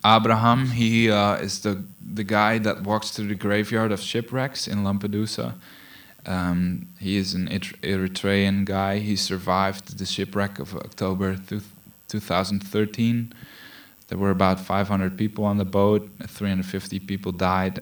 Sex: male